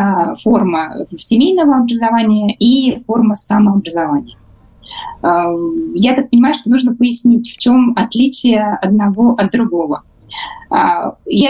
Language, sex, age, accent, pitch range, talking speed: Russian, female, 20-39, native, 205-265 Hz, 100 wpm